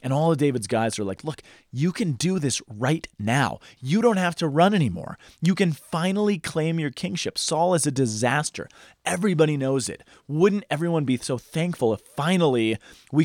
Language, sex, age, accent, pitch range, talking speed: English, male, 30-49, American, 120-160 Hz, 185 wpm